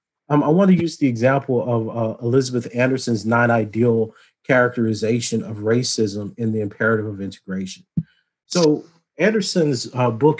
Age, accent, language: 40-59, American, English